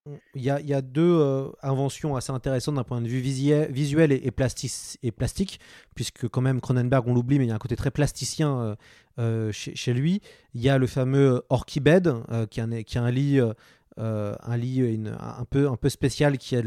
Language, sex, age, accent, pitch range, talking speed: French, male, 30-49, French, 120-145 Hz, 195 wpm